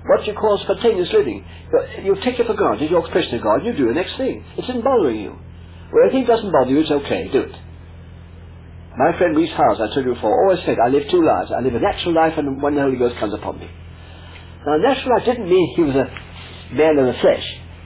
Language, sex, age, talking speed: English, male, 60-79, 245 wpm